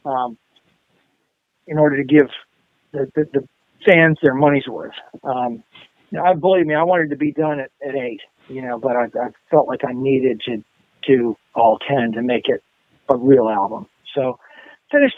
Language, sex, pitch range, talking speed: English, male, 140-170 Hz, 180 wpm